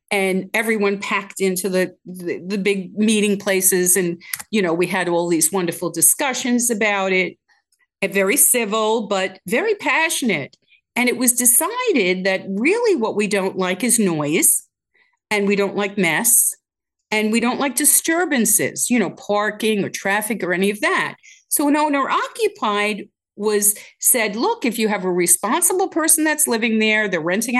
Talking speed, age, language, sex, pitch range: 165 wpm, 50-69, English, female, 195-280 Hz